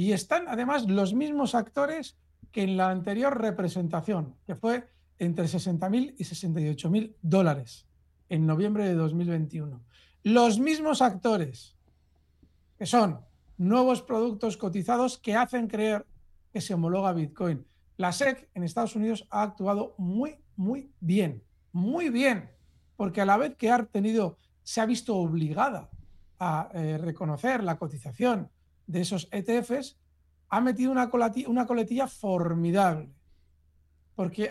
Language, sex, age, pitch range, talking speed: Spanish, male, 50-69, 170-240 Hz, 130 wpm